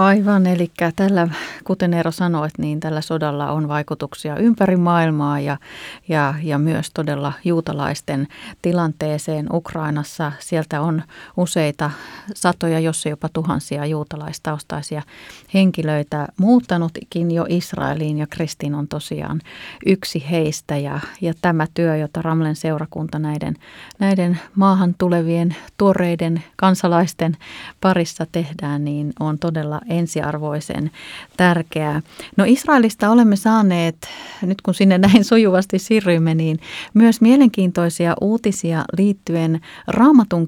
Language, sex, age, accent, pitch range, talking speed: Finnish, female, 30-49, native, 150-185 Hz, 110 wpm